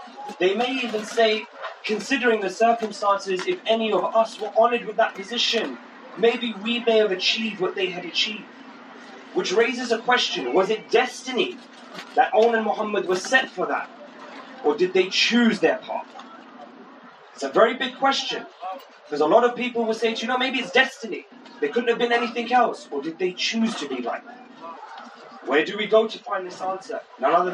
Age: 30-49